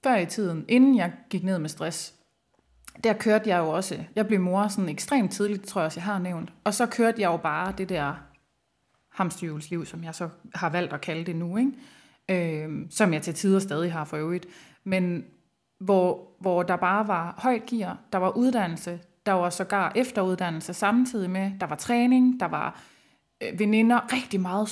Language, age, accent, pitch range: Danish, 20-39, native, 175-220 Hz